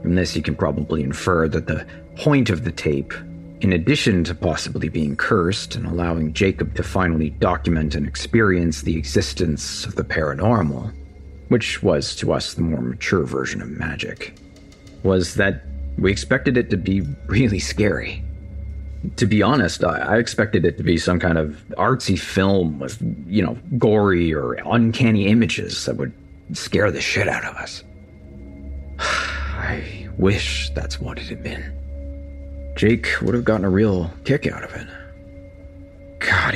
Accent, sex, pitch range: American, male, 75-100 Hz